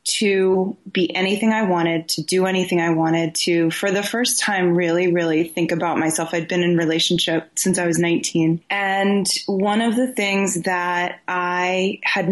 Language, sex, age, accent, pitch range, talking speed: English, female, 20-39, American, 170-215 Hz, 175 wpm